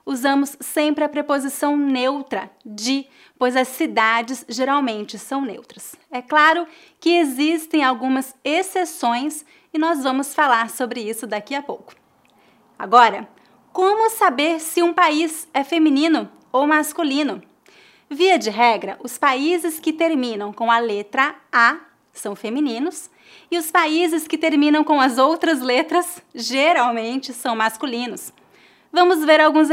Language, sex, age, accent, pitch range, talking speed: English, female, 20-39, Brazilian, 235-320 Hz, 130 wpm